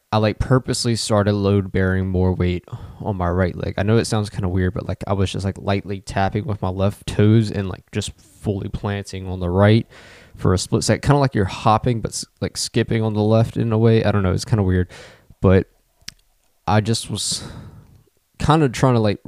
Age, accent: 20-39, American